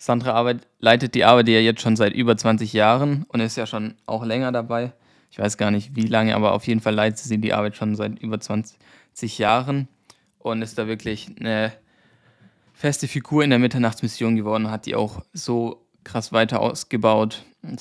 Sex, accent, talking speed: male, German, 190 wpm